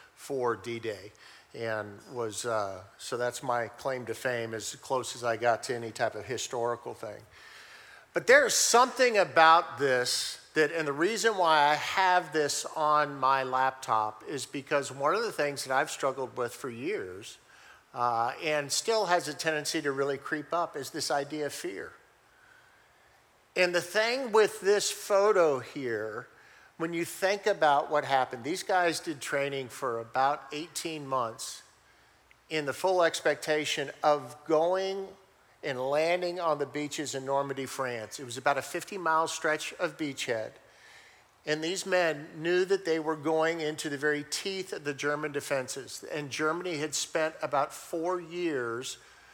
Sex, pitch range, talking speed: male, 135-170 Hz, 160 wpm